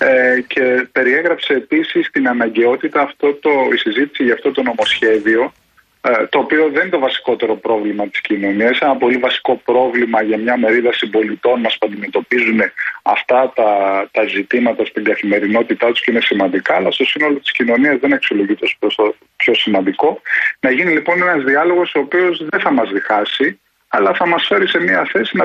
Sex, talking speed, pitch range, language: male, 165 wpm, 115-160 Hz, Greek